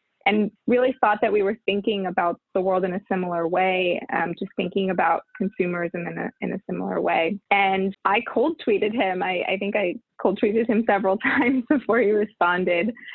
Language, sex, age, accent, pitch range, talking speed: English, female, 20-39, American, 180-220 Hz, 190 wpm